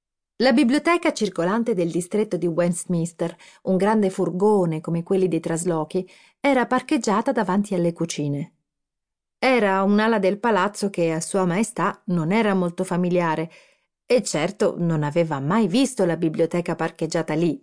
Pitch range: 170-235 Hz